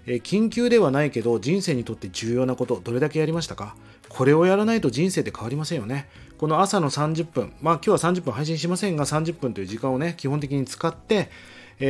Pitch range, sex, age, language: 115-175 Hz, male, 30-49, Japanese